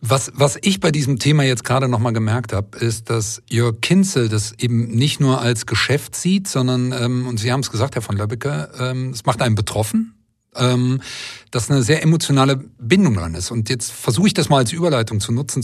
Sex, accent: male, German